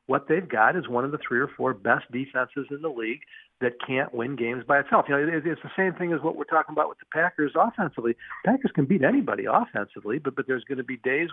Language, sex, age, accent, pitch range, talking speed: English, male, 50-69, American, 125-155 Hz, 255 wpm